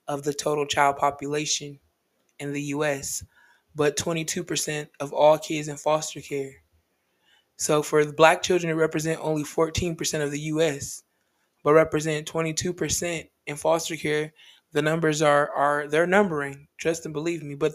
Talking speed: 150 wpm